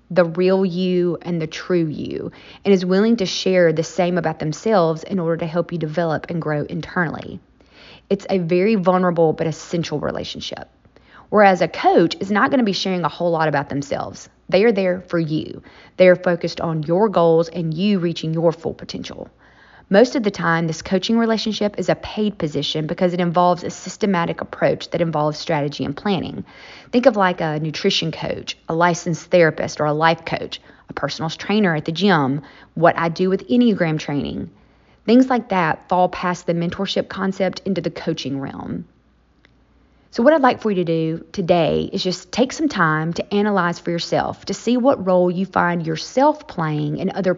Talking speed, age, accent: 190 wpm, 30-49, American